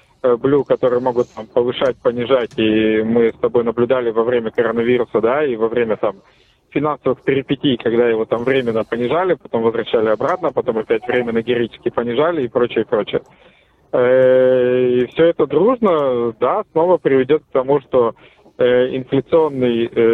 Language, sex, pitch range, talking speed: Russian, male, 120-145 Hz, 145 wpm